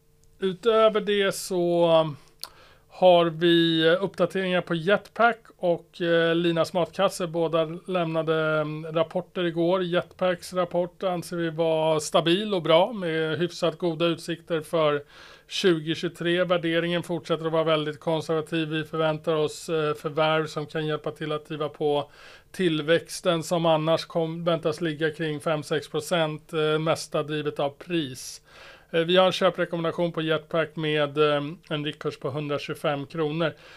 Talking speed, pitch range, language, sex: 125 wpm, 160-180 Hz, Swedish, male